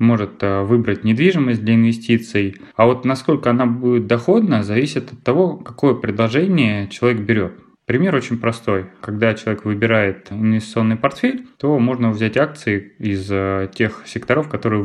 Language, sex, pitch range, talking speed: Russian, male, 110-140 Hz, 135 wpm